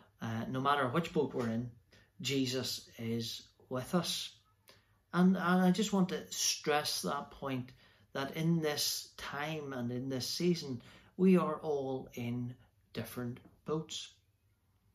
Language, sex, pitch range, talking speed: English, male, 105-145 Hz, 135 wpm